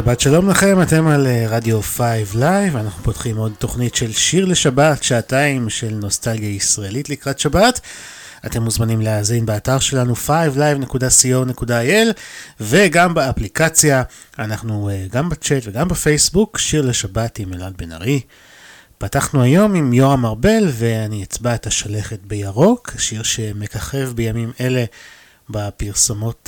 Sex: male